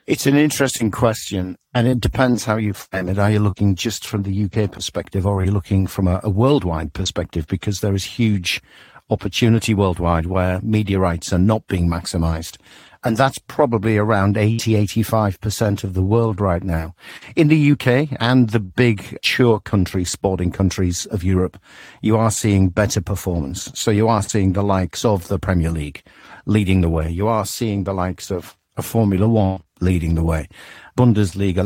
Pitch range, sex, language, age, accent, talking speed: 95-115 Hz, male, English, 50-69, British, 180 wpm